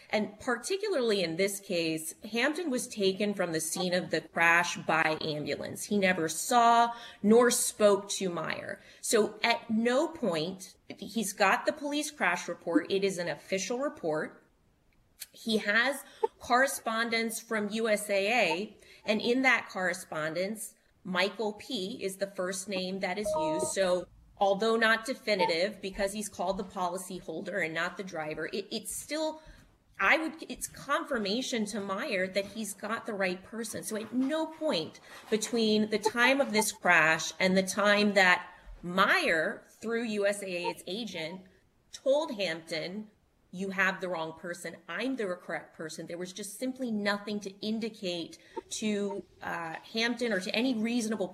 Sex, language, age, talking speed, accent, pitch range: female, English, 20-39, 150 wpm, American, 185-230 Hz